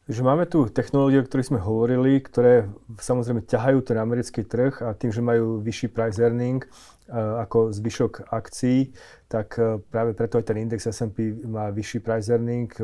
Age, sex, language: 30-49, male, Slovak